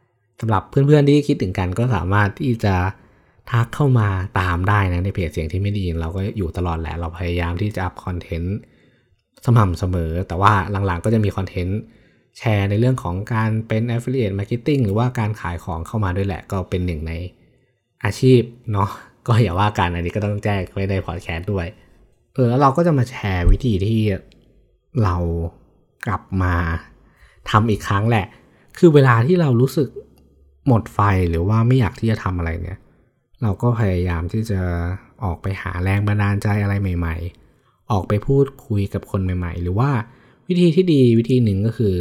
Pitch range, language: 90-120 Hz, Thai